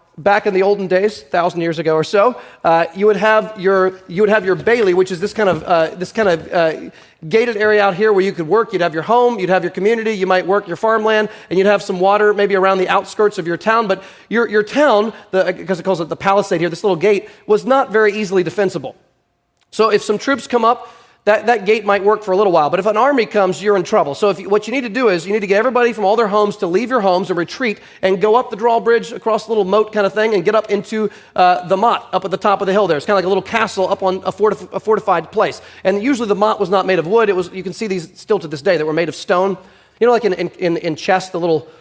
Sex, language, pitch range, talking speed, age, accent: male, English, 185-220 Hz, 295 wpm, 30-49, American